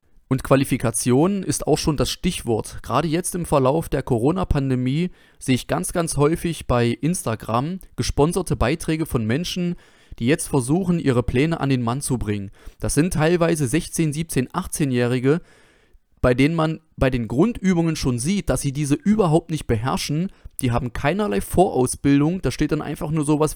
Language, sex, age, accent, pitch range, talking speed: German, male, 30-49, German, 125-165 Hz, 165 wpm